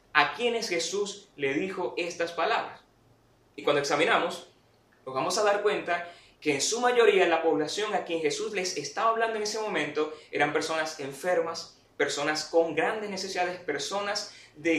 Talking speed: 160 wpm